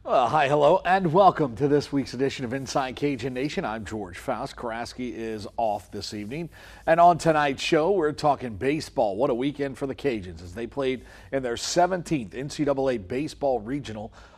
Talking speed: 180 wpm